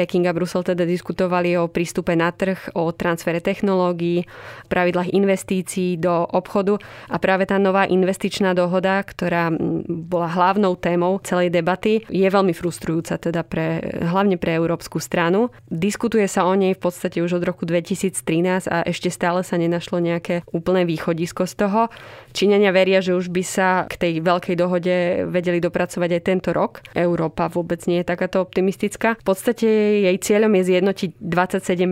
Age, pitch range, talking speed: 20-39, 170-190 Hz, 160 wpm